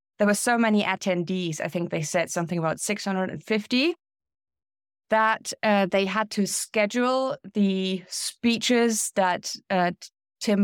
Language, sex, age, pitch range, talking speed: English, female, 20-39, 180-215 Hz, 130 wpm